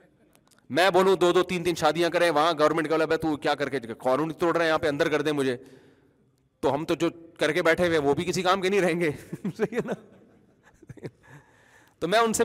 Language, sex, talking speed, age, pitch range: Urdu, male, 225 wpm, 30-49, 150-200 Hz